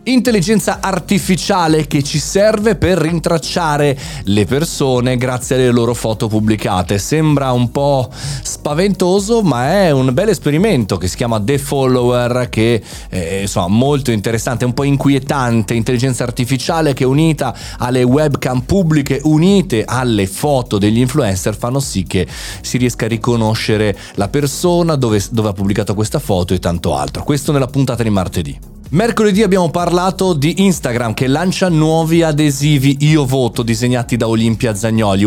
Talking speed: 145 wpm